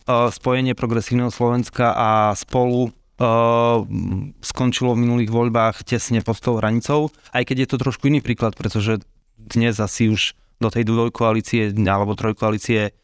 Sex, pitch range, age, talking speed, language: male, 110-125 Hz, 20-39, 135 wpm, Slovak